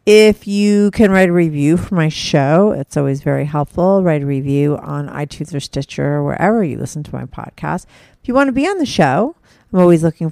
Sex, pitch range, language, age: female, 140-185 Hz, English, 40-59